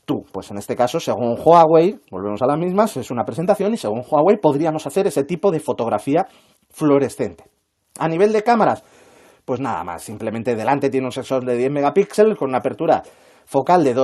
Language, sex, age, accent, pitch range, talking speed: Spanish, male, 30-49, Spanish, 130-195 Hz, 185 wpm